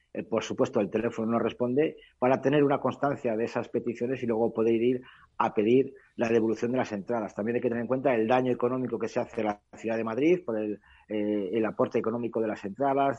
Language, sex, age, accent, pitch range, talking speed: Spanish, male, 40-59, Spanish, 115-145 Hz, 225 wpm